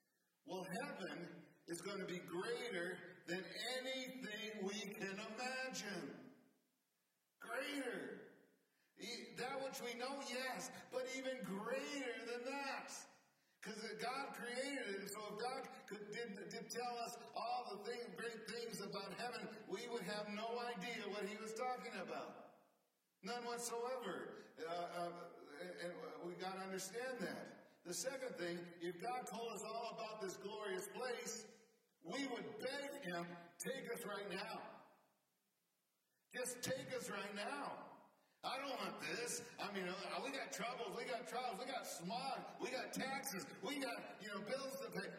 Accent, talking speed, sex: American, 150 wpm, male